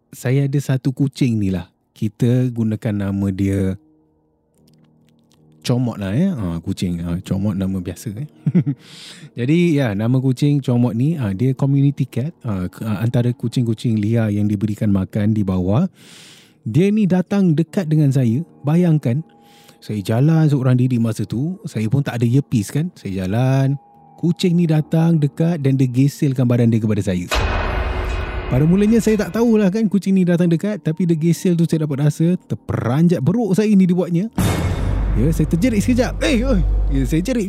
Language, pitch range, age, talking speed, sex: Malay, 105-165 Hz, 20-39, 165 wpm, male